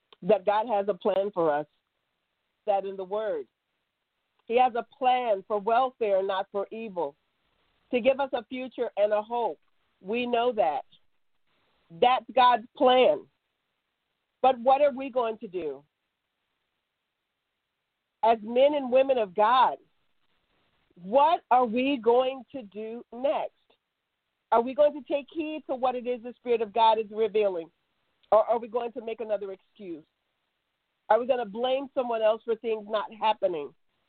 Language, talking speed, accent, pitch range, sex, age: English, 155 wpm, American, 220-280 Hz, female, 50-69